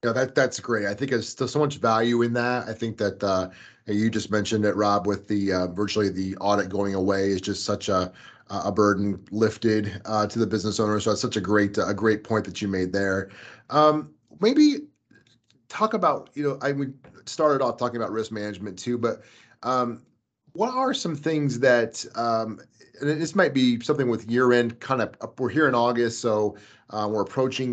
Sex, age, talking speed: male, 30-49, 210 wpm